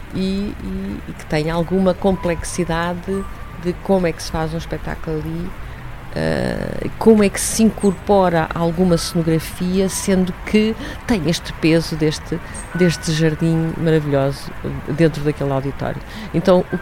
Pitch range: 135-175 Hz